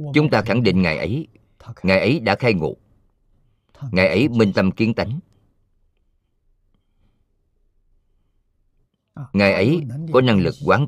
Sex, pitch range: male, 80-110 Hz